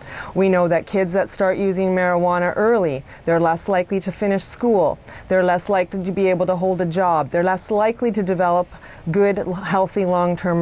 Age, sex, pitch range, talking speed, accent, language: 30-49, female, 175-205 Hz, 185 wpm, American, English